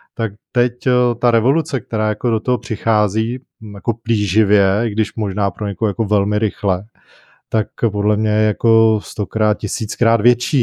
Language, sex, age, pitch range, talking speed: Czech, male, 20-39, 105-120 Hz, 150 wpm